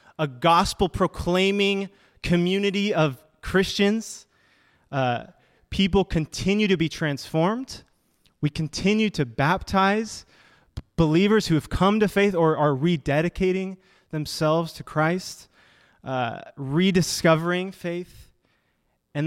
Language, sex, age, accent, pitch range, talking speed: English, male, 20-39, American, 140-185 Hz, 95 wpm